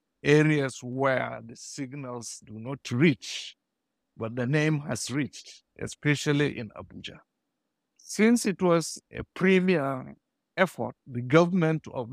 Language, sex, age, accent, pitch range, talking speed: English, male, 60-79, South African, 125-170 Hz, 120 wpm